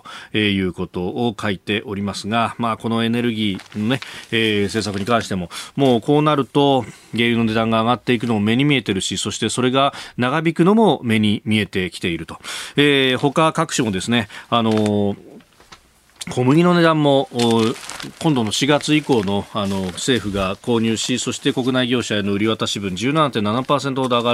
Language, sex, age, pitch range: Japanese, male, 40-59, 105-135 Hz